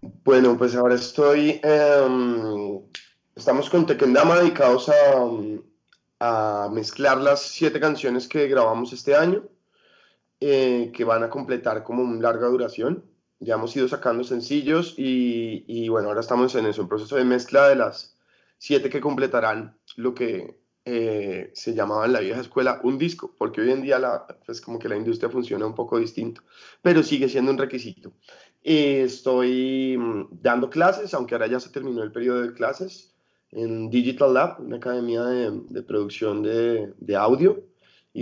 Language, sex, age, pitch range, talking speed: Spanish, male, 20-39, 120-145 Hz, 165 wpm